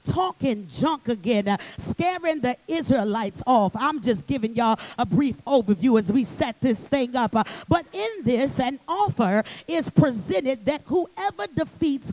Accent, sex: American, female